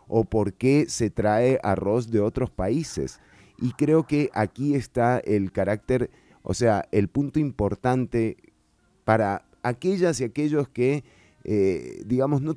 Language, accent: Spanish, Argentinian